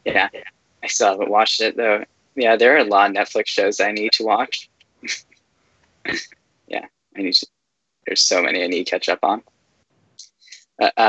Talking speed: 180 wpm